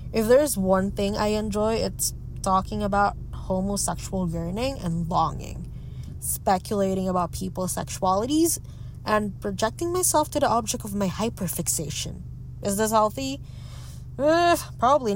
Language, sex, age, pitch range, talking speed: English, female, 20-39, 170-215 Hz, 125 wpm